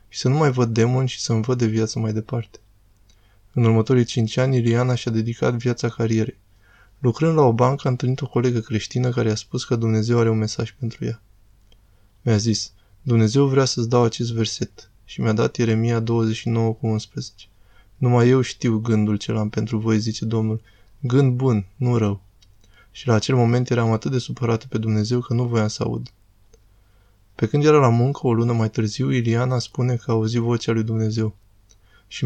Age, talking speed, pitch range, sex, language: 20-39, 190 wpm, 105-125 Hz, male, Romanian